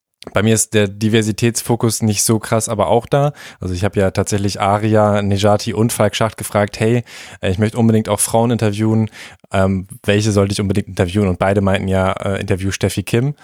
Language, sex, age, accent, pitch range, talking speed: German, male, 20-39, German, 100-115 Hz, 190 wpm